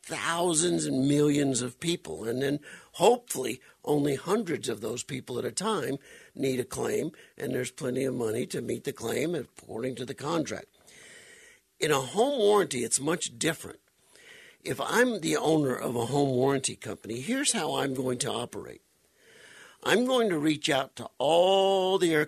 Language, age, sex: English, 60-79, male